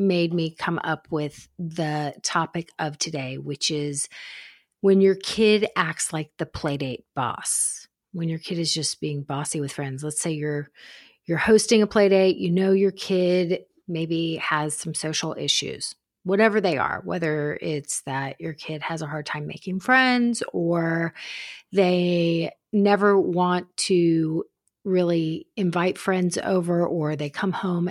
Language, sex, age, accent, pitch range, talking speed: English, female, 40-59, American, 160-190 Hz, 155 wpm